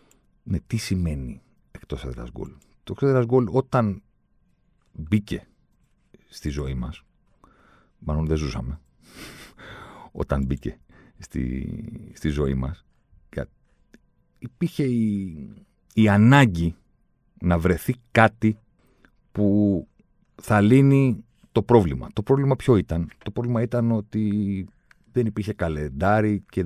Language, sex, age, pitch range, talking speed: Greek, male, 50-69, 80-115 Hz, 105 wpm